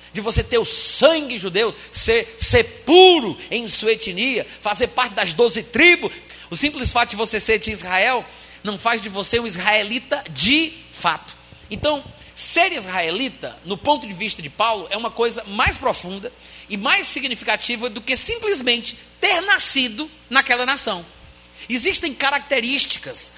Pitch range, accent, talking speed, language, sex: 195-280 Hz, Brazilian, 150 wpm, Portuguese, male